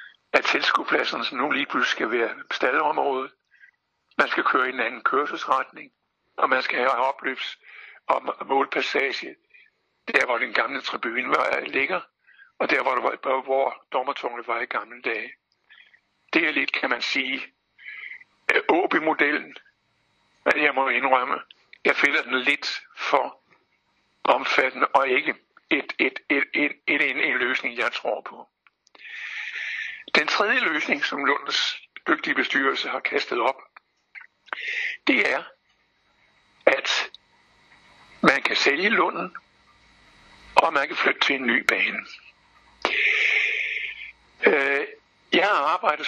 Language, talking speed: Danish, 125 wpm